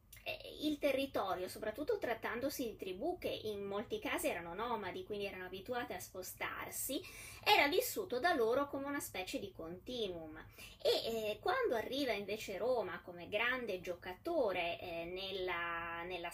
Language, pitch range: Italian, 185-295 Hz